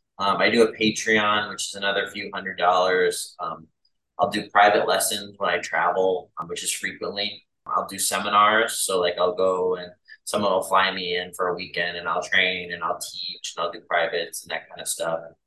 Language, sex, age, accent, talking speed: English, male, 20-39, American, 210 wpm